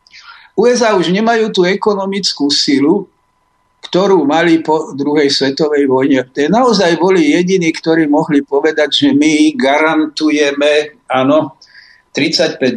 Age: 50-69